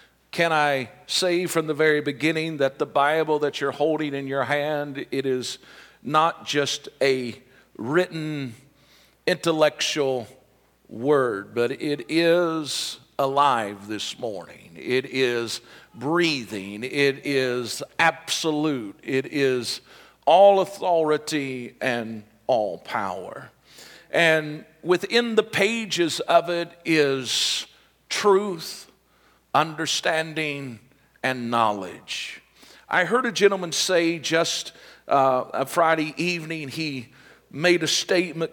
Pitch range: 130-165 Hz